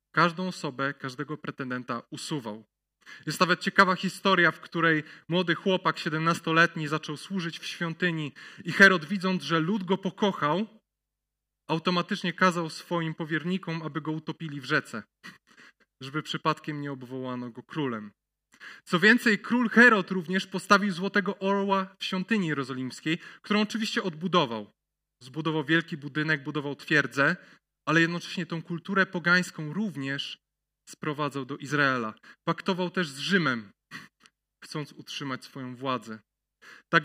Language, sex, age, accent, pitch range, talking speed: Polish, male, 20-39, native, 145-185 Hz, 125 wpm